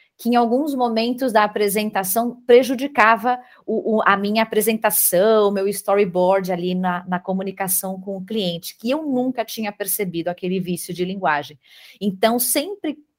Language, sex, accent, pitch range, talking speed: Portuguese, female, Brazilian, 180-230 Hz, 145 wpm